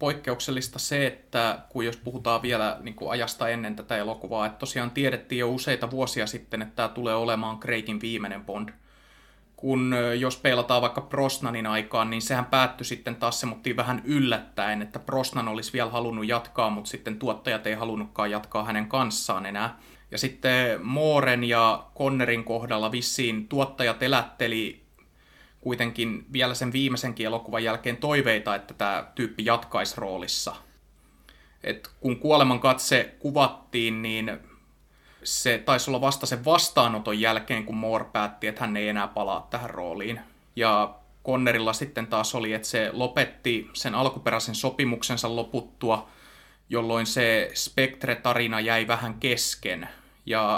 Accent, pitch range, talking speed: native, 110-130 Hz, 140 wpm